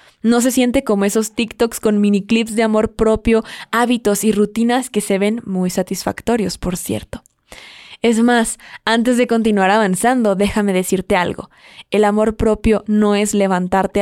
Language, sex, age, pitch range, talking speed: Spanish, female, 20-39, 195-225 Hz, 160 wpm